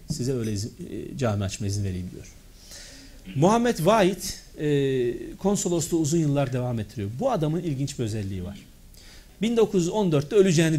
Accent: native